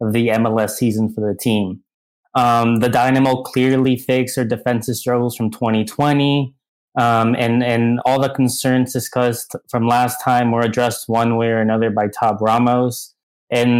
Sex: male